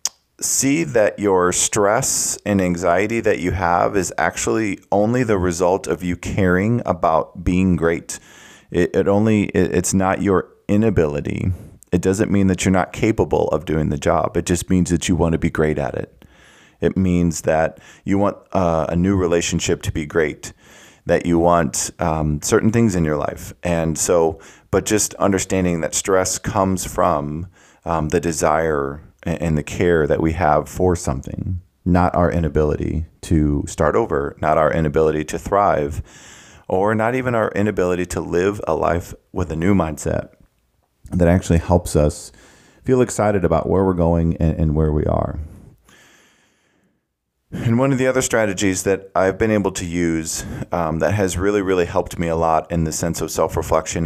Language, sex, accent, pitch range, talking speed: English, male, American, 80-95 Hz, 170 wpm